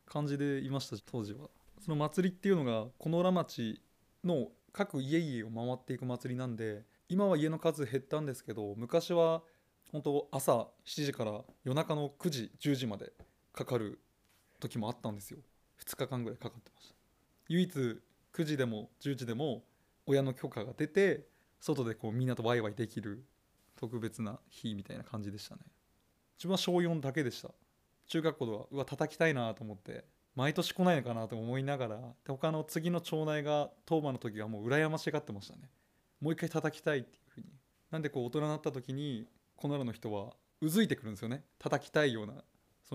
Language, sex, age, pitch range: Japanese, male, 20-39, 115-160 Hz